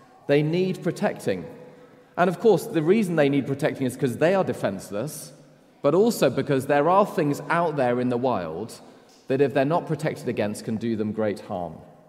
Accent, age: British, 30-49